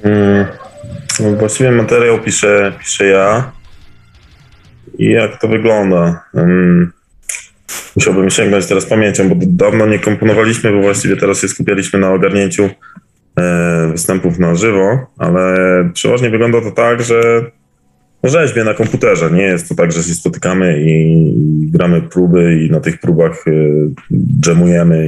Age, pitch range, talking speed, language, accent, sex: 20-39, 85-105 Hz, 120 wpm, Polish, native, male